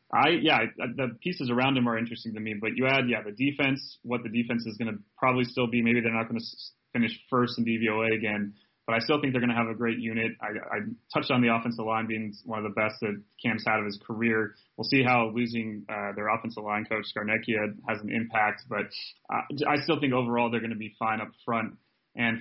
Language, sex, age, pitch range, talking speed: English, male, 30-49, 110-120 Hz, 250 wpm